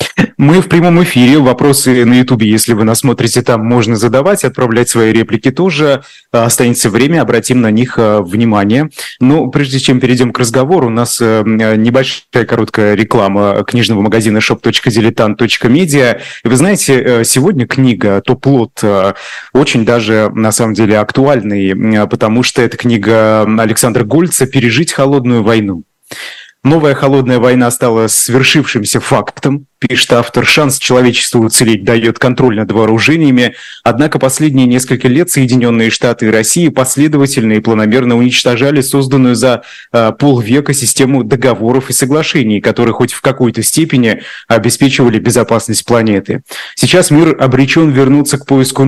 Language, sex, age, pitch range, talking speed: Russian, male, 20-39, 115-135 Hz, 130 wpm